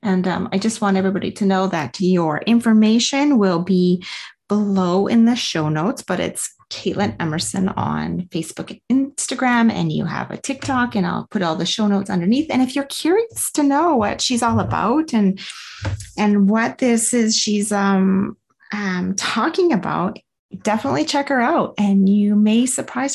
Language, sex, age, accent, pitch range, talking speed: English, female, 30-49, American, 185-235 Hz, 175 wpm